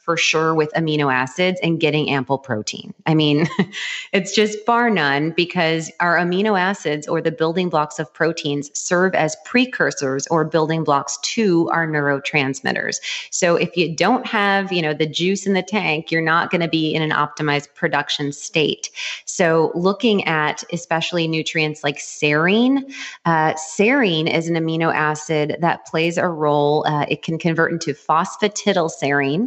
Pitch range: 150-180 Hz